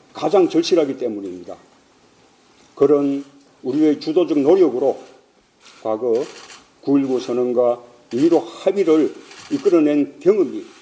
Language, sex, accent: Korean, male, native